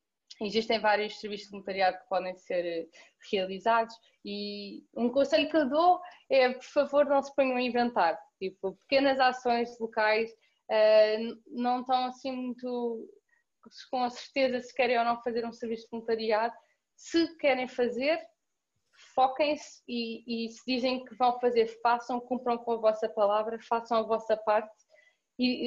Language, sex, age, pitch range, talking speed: Portuguese, female, 20-39, 215-255 Hz, 155 wpm